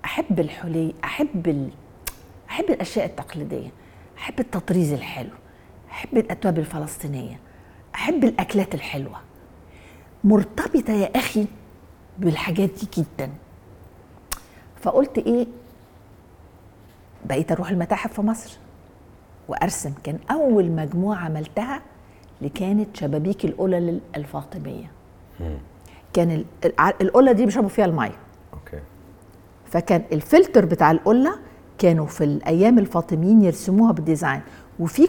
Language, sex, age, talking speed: English, female, 50-69, 95 wpm